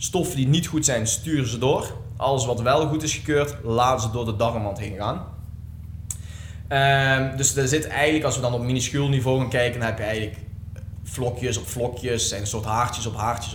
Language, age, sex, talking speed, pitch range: Dutch, 20-39, male, 210 wpm, 105-130 Hz